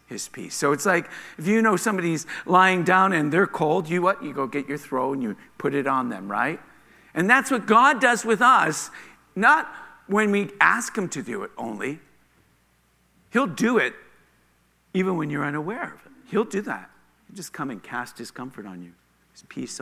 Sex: male